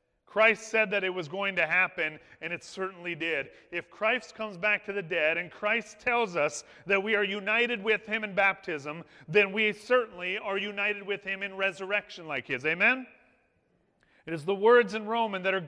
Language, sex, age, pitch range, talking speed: English, male, 30-49, 165-215 Hz, 195 wpm